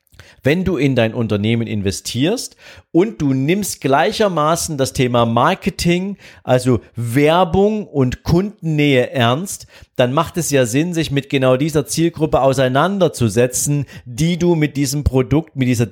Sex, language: male, German